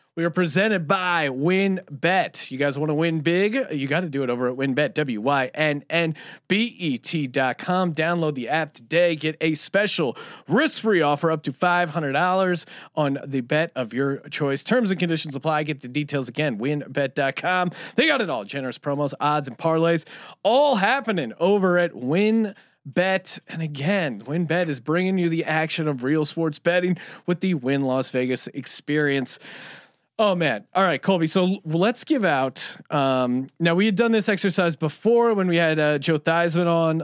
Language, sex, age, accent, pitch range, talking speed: English, male, 30-49, American, 150-195 Hz, 170 wpm